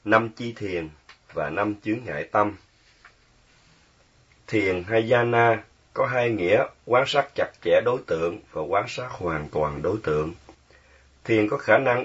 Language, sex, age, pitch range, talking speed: Vietnamese, male, 30-49, 100-125 Hz, 155 wpm